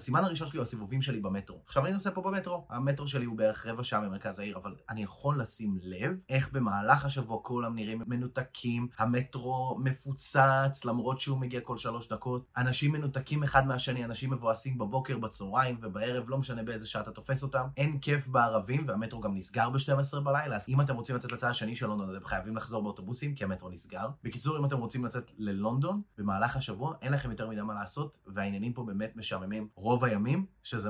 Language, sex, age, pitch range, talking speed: Hebrew, male, 20-39, 110-140 Hz, 160 wpm